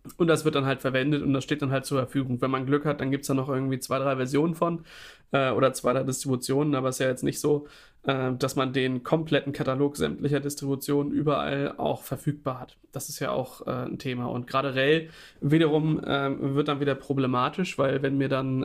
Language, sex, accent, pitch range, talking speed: German, male, German, 130-150 Hz, 230 wpm